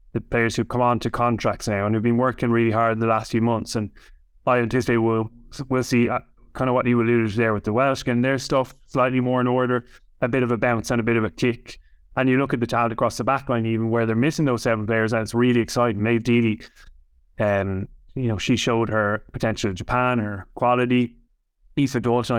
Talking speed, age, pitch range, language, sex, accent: 240 wpm, 20-39, 110-125 Hz, English, male, Irish